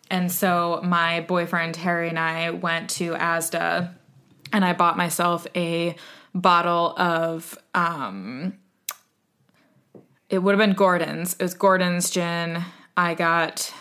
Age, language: 20-39, English